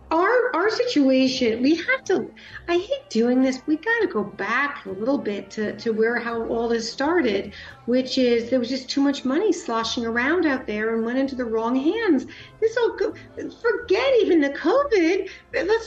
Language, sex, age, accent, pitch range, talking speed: English, female, 50-69, American, 235-335 Hz, 185 wpm